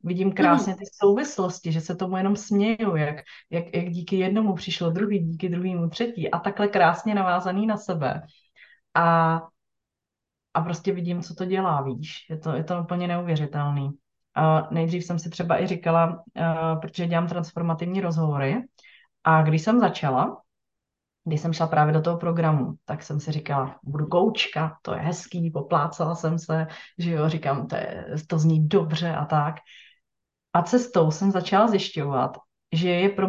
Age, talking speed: 30-49, 165 wpm